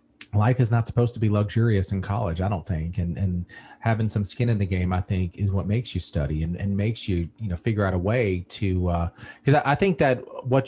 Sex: male